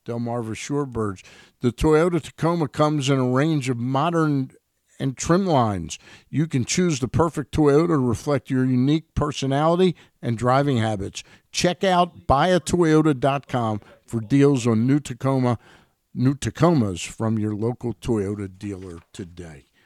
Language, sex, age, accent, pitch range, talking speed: English, male, 50-69, American, 105-145 Hz, 130 wpm